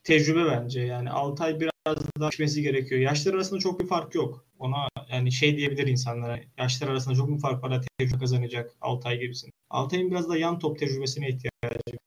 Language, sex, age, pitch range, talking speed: Turkish, male, 20-39, 125-150 Hz, 180 wpm